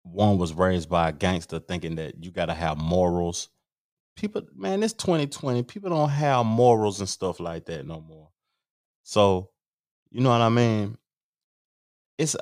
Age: 30-49